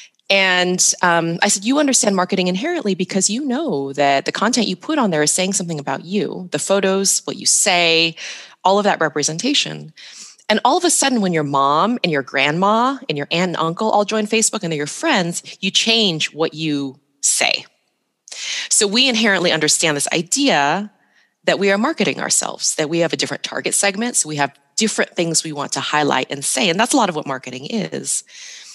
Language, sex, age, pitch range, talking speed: English, female, 20-39, 155-220 Hz, 205 wpm